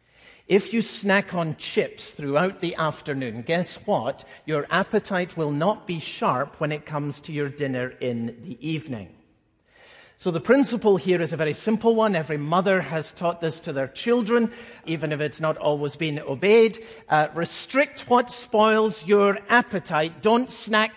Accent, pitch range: British, 150-220 Hz